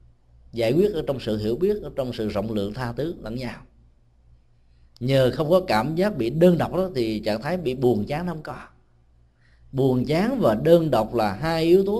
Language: Vietnamese